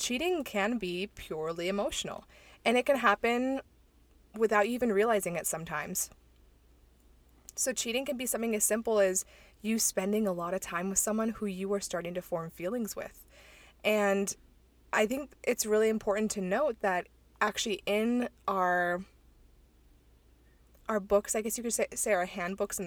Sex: female